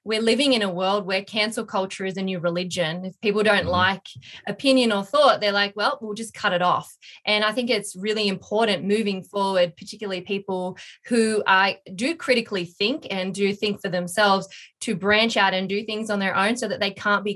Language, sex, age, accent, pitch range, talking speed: English, female, 20-39, Australian, 190-220 Hz, 210 wpm